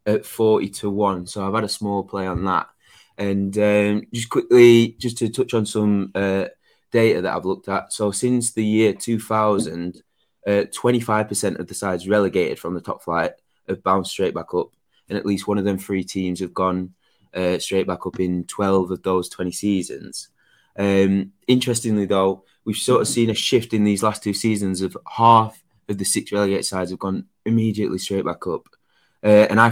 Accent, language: British, English